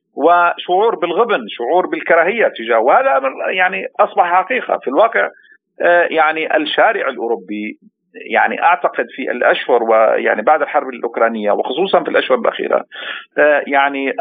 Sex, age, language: male, 50-69, Arabic